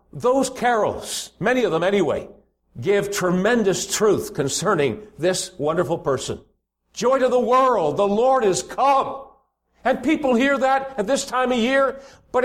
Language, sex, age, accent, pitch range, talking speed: English, male, 60-79, American, 170-255 Hz, 150 wpm